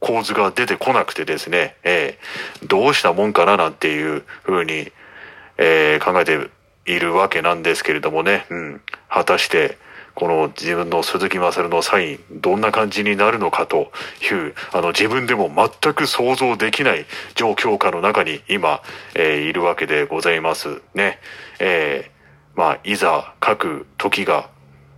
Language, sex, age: Japanese, male, 40-59